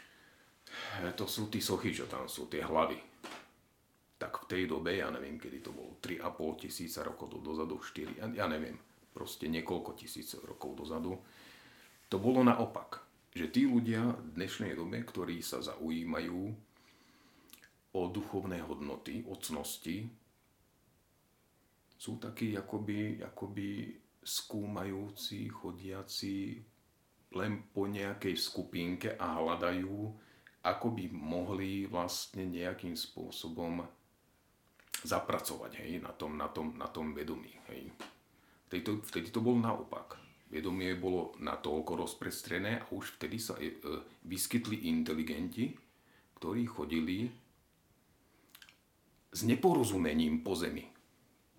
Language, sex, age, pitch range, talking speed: Czech, male, 40-59, 90-110 Hz, 115 wpm